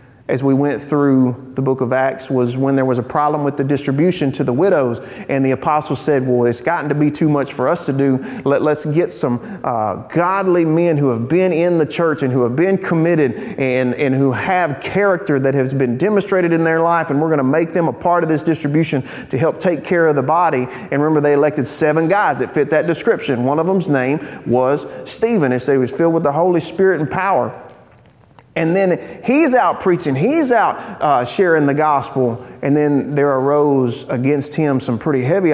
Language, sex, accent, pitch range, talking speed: English, male, American, 130-170 Hz, 220 wpm